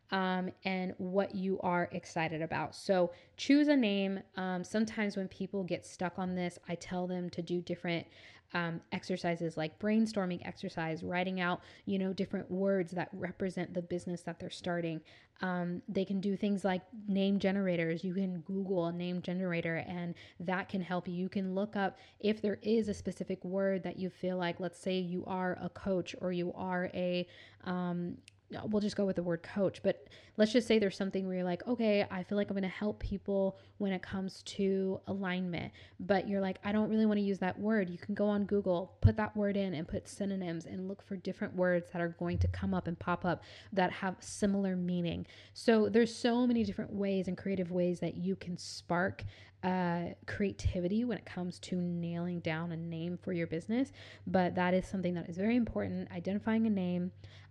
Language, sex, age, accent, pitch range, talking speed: English, female, 20-39, American, 175-195 Hz, 205 wpm